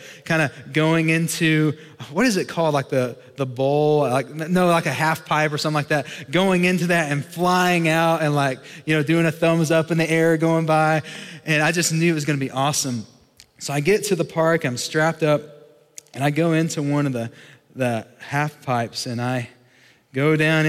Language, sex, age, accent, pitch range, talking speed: English, male, 20-39, American, 145-175 Hz, 215 wpm